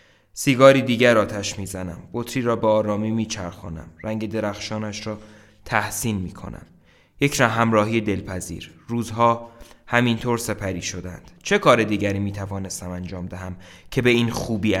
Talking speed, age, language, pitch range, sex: 135 wpm, 20-39, Persian, 100-115 Hz, male